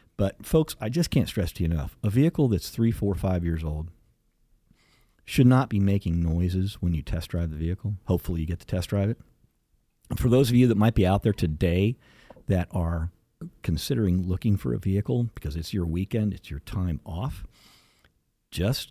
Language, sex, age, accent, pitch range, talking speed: English, male, 50-69, American, 85-115 Hz, 195 wpm